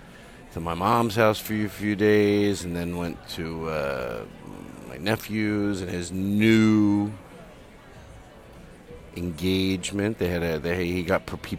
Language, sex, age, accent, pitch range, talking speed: English, male, 50-69, American, 90-125 Hz, 140 wpm